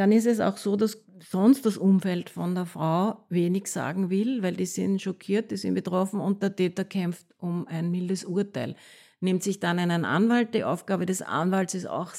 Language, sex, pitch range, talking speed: German, female, 170-195 Hz, 200 wpm